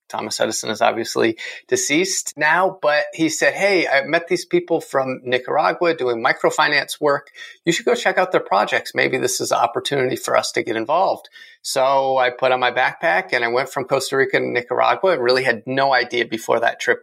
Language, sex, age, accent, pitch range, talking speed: English, male, 30-49, American, 125-185 Hz, 205 wpm